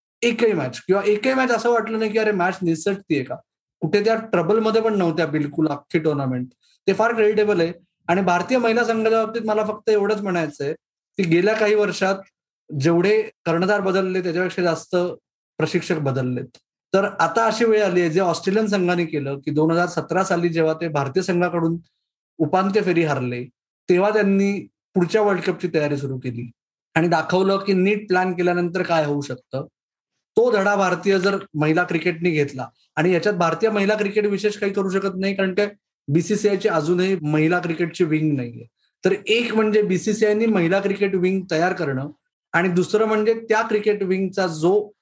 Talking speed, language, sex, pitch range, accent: 160 wpm, Marathi, male, 160-205 Hz, native